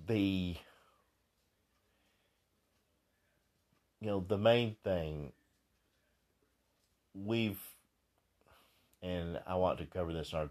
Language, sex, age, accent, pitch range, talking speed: English, male, 50-69, American, 85-100 Hz, 85 wpm